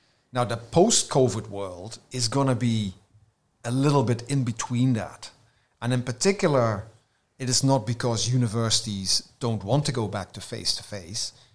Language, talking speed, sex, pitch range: English, 155 wpm, male, 105-130 Hz